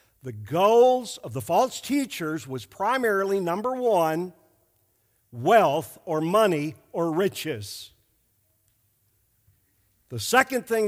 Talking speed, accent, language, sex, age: 100 wpm, American, English, male, 50-69